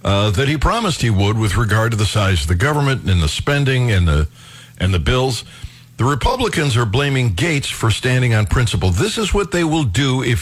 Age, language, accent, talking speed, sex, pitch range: 60-79, English, American, 220 wpm, male, 100-140 Hz